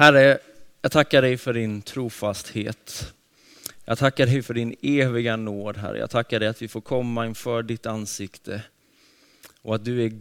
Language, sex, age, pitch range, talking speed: Swedish, male, 20-39, 105-125 Hz, 170 wpm